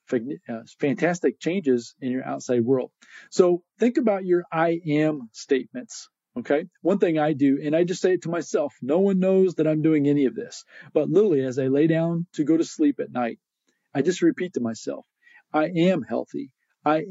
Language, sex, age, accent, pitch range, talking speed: English, male, 40-59, American, 135-185 Hz, 195 wpm